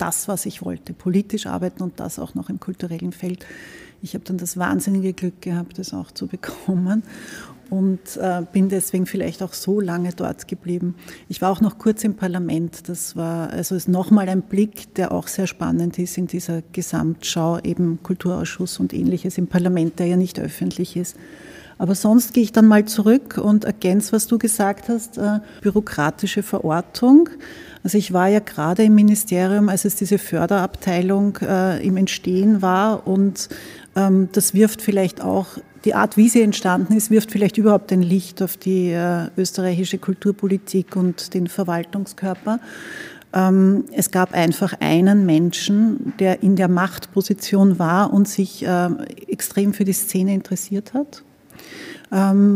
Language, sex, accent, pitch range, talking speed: German, female, Austrian, 180-210 Hz, 160 wpm